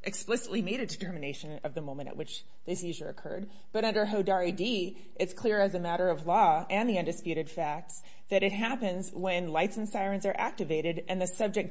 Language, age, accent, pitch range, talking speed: English, 30-49, American, 180-220 Hz, 200 wpm